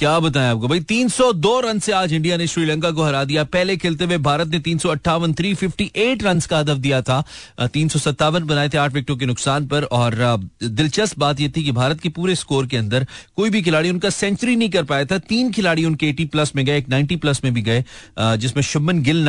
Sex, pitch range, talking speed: male, 130-175 Hz, 100 wpm